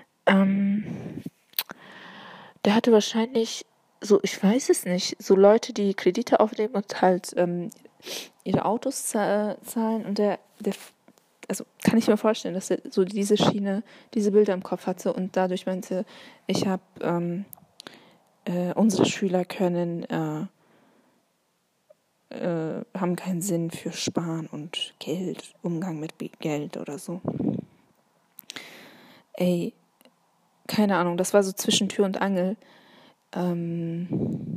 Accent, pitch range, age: German, 180-215 Hz, 20-39